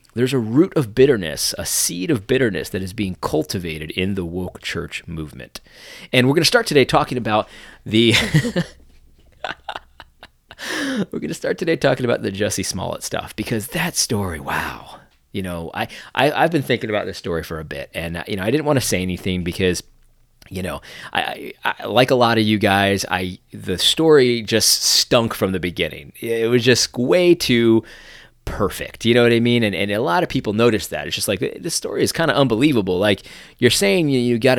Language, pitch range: English, 95-125 Hz